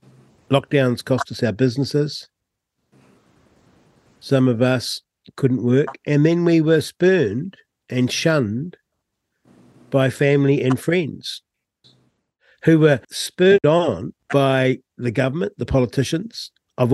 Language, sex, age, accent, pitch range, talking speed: English, male, 60-79, Australian, 115-145 Hz, 110 wpm